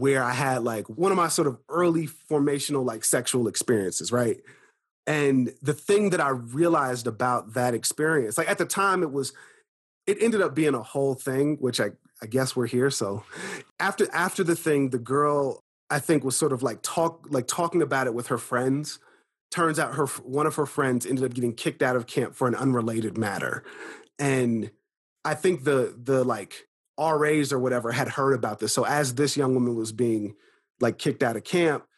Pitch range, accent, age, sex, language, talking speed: 120-150 Hz, American, 30-49, male, English, 200 wpm